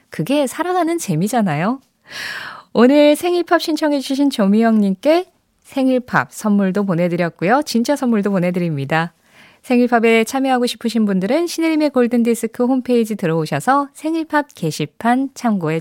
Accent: native